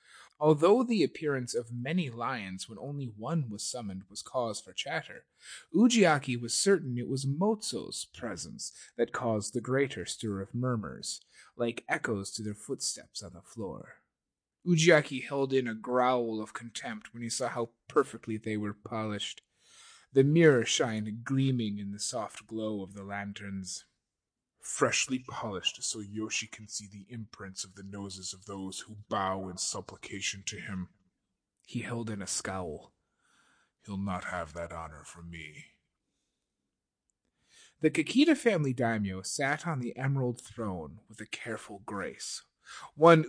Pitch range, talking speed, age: 100-135 Hz, 150 wpm, 30-49